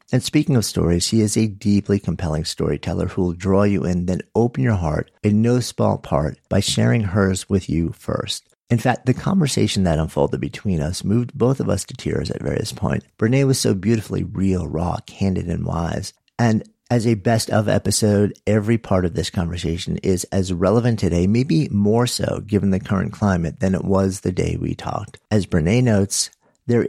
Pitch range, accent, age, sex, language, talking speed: 90-115 Hz, American, 50-69, male, English, 195 wpm